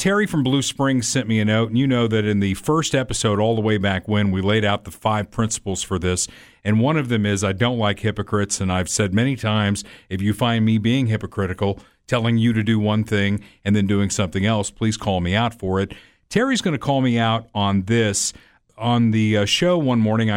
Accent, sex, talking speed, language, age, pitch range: American, male, 235 wpm, English, 50-69, 100-120 Hz